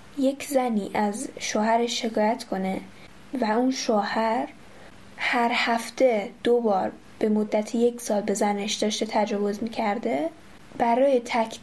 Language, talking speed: Persian, 125 wpm